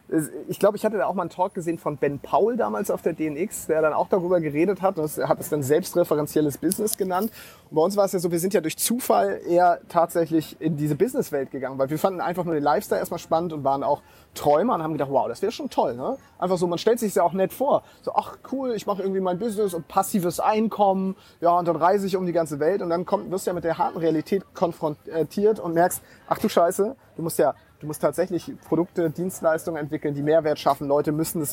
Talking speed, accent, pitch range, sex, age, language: 255 wpm, German, 155-195 Hz, male, 30-49, German